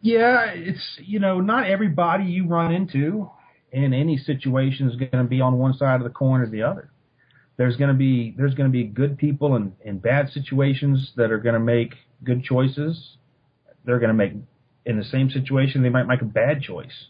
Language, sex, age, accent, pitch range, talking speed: English, male, 40-59, American, 115-140 Hz, 195 wpm